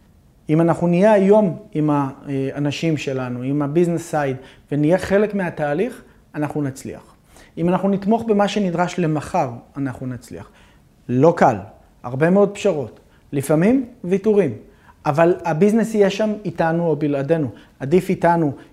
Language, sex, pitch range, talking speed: Hebrew, male, 145-190 Hz, 125 wpm